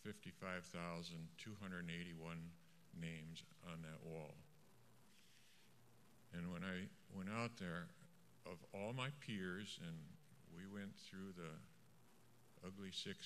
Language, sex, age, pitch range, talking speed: English, male, 60-79, 85-105 Hz, 95 wpm